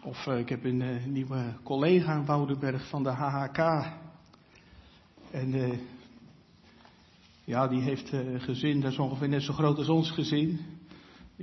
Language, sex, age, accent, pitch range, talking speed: Dutch, male, 50-69, Dutch, 130-175 Hz, 165 wpm